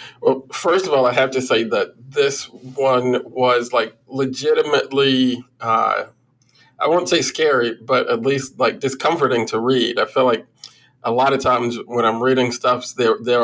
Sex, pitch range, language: male, 120-155 Hz, English